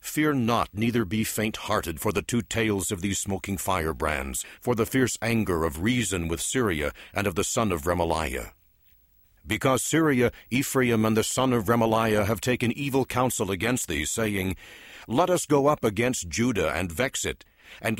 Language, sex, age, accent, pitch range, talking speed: English, male, 60-79, American, 95-125 Hz, 175 wpm